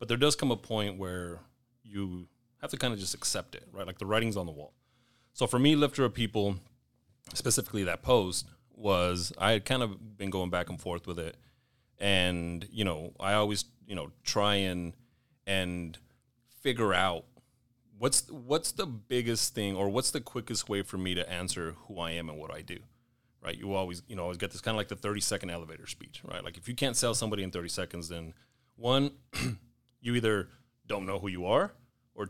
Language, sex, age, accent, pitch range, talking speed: English, male, 30-49, American, 90-125 Hz, 205 wpm